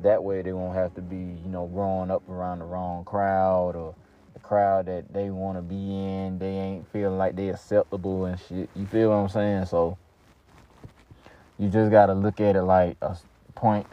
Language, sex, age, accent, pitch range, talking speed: English, male, 20-39, American, 85-100 Hz, 205 wpm